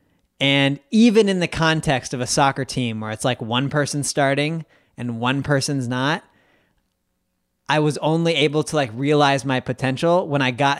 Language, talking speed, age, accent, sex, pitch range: English, 170 wpm, 30-49, American, male, 125-150 Hz